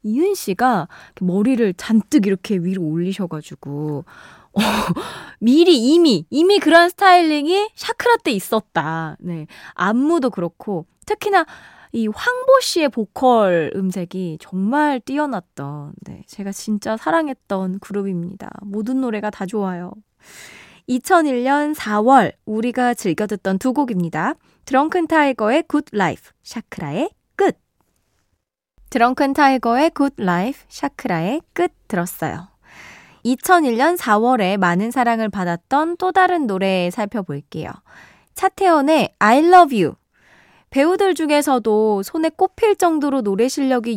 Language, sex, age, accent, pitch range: Korean, female, 20-39, native, 195-305 Hz